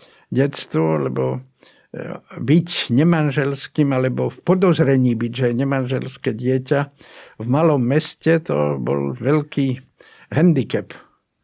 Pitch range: 130-160 Hz